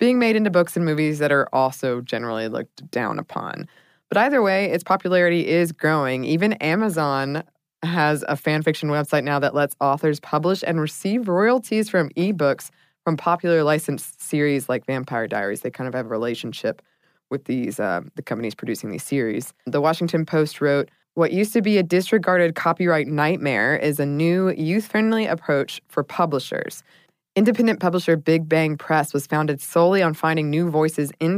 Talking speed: 175 wpm